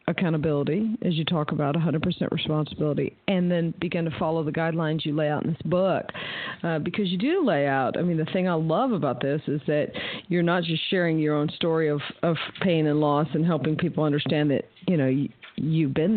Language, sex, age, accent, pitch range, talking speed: English, female, 50-69, American, 155-190 Hz, 215 wpm